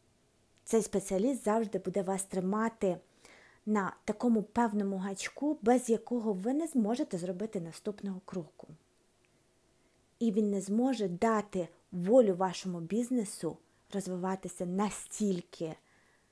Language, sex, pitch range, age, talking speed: Ukrainian, female, 175-220 Hz, 20-39, 105 wpm